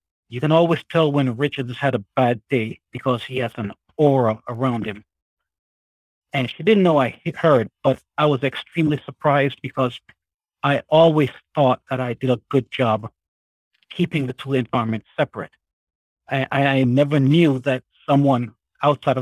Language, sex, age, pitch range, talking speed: English, male, 50-69, 115-145 Hz, 160 wpm